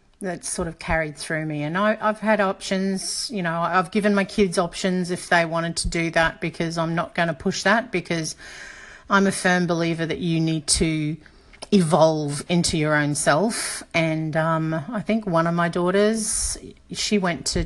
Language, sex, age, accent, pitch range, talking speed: English, female, 40-59, Australian, 155-195 Hz, 185 wpm